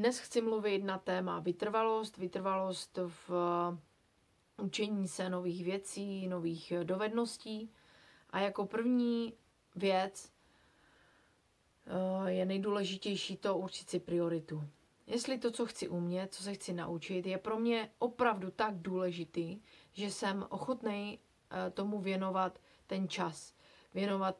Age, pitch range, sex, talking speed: 30-49, 180-205 Hz, female, 115 wpm